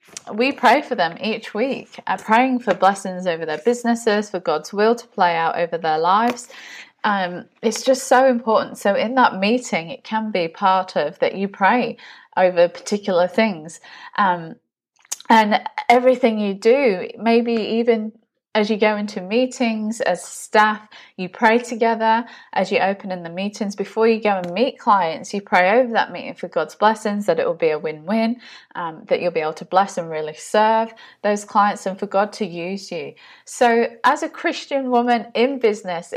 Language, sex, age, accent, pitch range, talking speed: English, female, 20-39, British, 185-235 Hz, 180 wpm